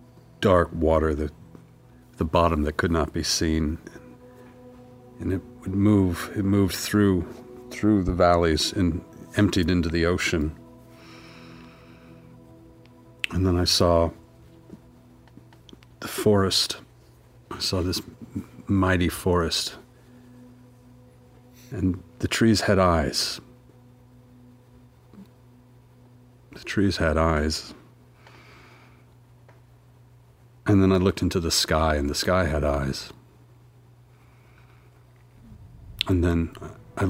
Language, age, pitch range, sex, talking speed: English, 50-69, 85-125 Hz, male, 95 wpm